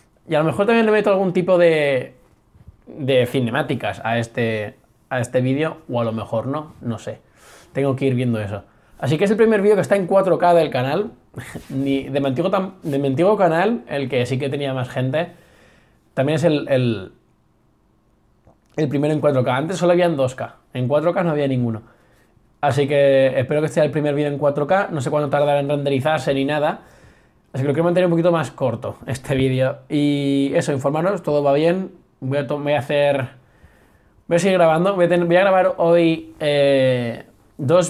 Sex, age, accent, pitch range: male, 20-39, Spanish, 130-160 Hz